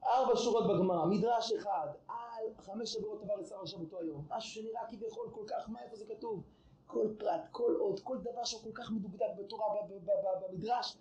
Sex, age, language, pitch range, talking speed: male, 30-49, Hebrew, 190-315 Hz, 185 wpm